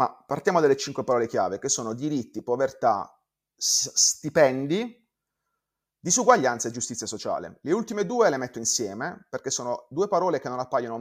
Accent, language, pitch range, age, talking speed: native, Italian, 115-145 Hz, 30-49, 155 wpm